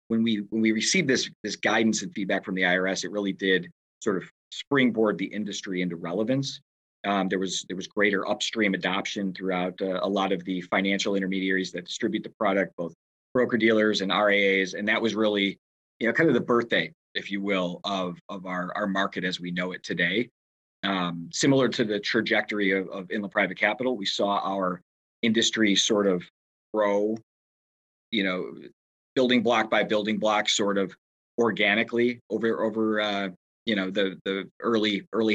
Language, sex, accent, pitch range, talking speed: English, male, American, 95-110 Hz, 185 wpm